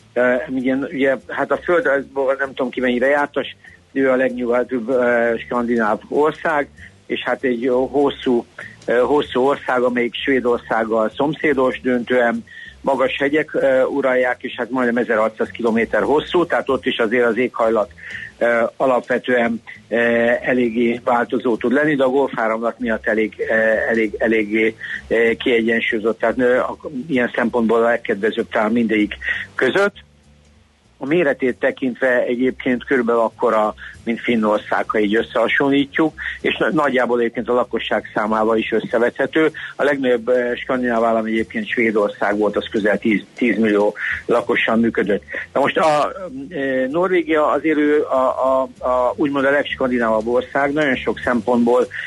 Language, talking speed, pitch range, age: Hungarian, 140 wpm, 115-130 Hz, 60-79